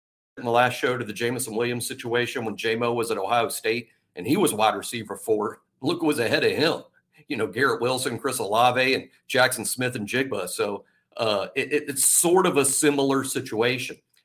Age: 50-69